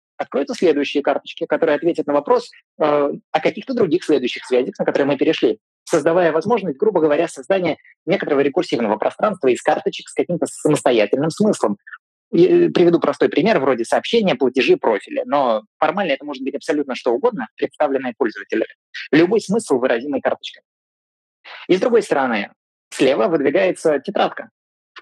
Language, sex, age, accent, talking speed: Russian, male, 20-39, native, 145 wpm